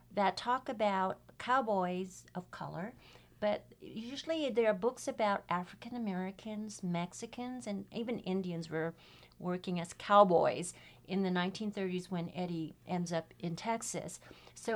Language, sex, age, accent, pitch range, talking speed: English, female, 50-69, American, 175-210 Hz, 130 wpm